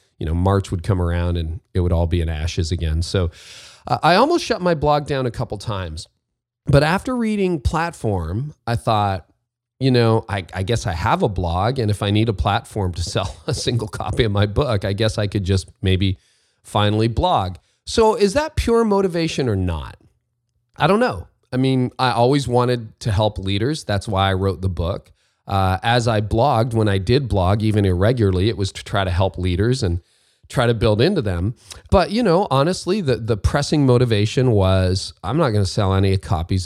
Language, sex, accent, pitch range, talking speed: English, male, American, 95-125 Hz, 205 wpm